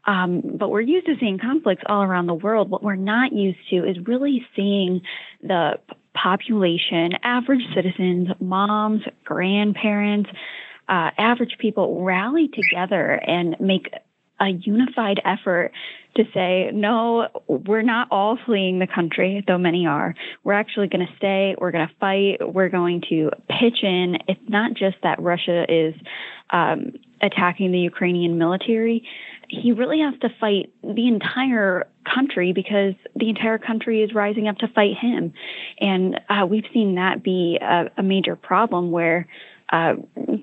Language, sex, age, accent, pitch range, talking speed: English, female, 10-29, American, 180-225 Hz, 150 wpm